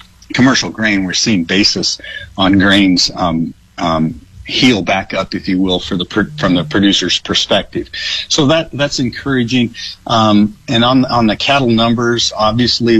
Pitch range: 95-110 Hz